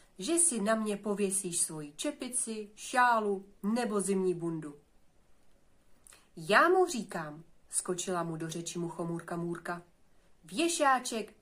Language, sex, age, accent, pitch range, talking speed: Czech, female, 40-59, native, 170-240 Hz, 110 wpm